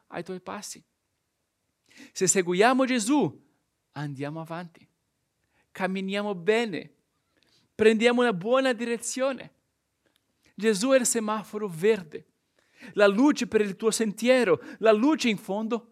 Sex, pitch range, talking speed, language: male, 175-240 Hz, 110 wpm, Italian